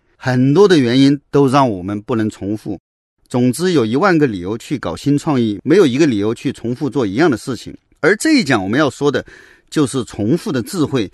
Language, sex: Chinese, male